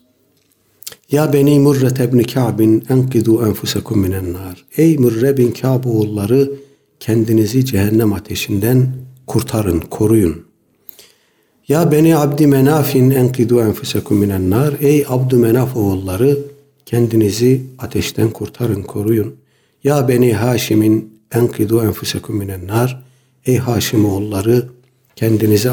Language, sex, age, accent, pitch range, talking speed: Turkish, male, 60-79, native, 110-140 Hz, 105 wpm